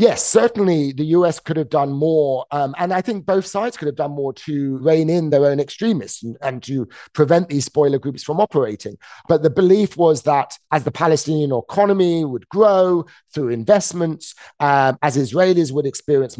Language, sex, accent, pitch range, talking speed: English, male, British, 130-170 Hz, 185 wpm